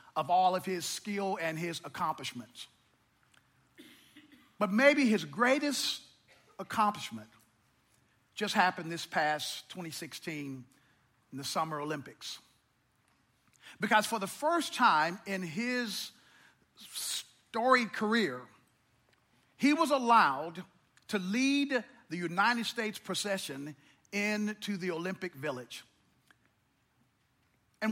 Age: 50-69